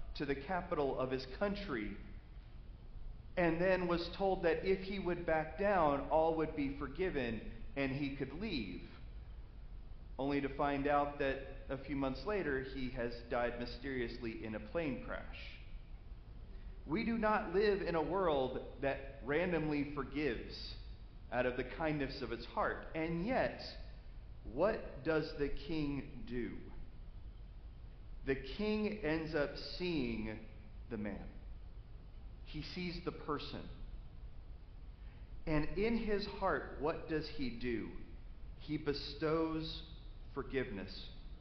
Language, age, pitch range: English, 40-59, 120-180 Hz